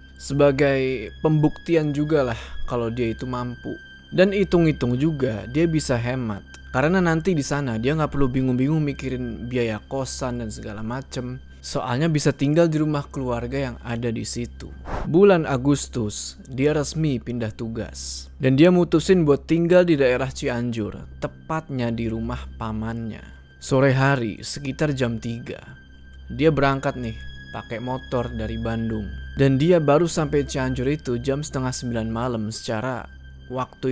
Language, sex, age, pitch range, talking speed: Indonesian, male, 20-39, 110-140 Hz, 140 wpm